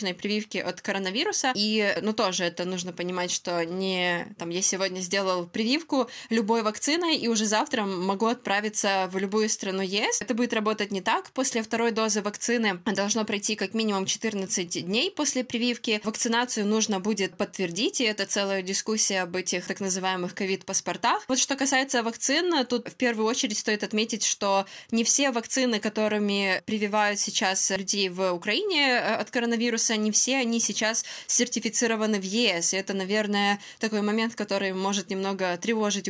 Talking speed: 160 wpm